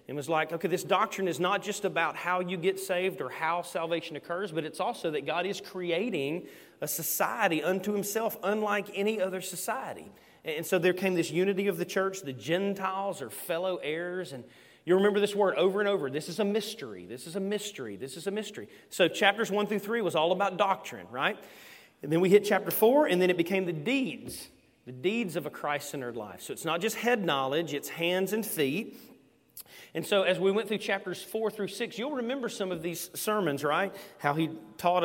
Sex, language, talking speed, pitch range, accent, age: male, English, 215 wpm, 170-205 Hz, American, 30-49